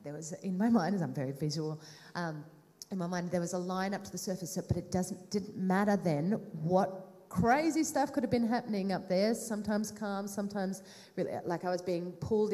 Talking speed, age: 215 wpm, 30-49